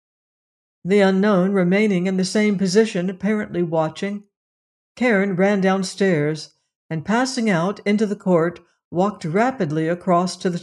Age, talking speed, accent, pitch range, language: 60-79, 130 wpm, American, 170-215 Hz, English